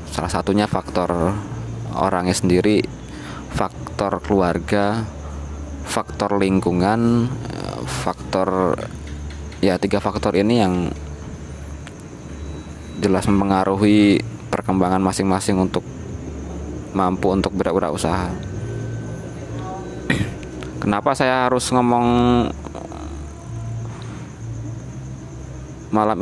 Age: 20-39